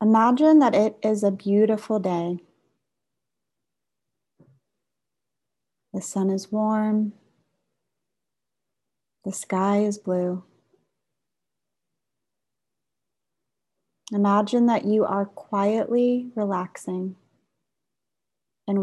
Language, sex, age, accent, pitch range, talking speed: English, female, 30-49, American, 185-220 Hz, 70 wpm